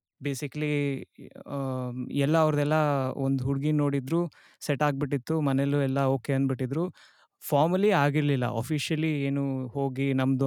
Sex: male